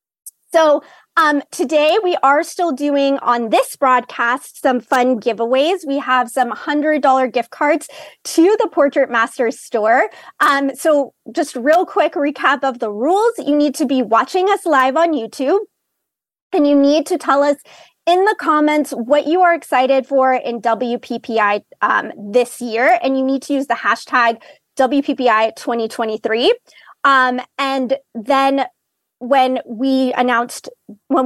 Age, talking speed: 20-39, 150 wpm